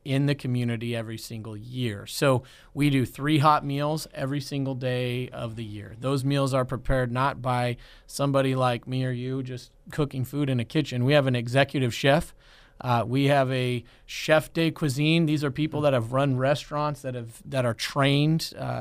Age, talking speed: 30-49, 190 wpm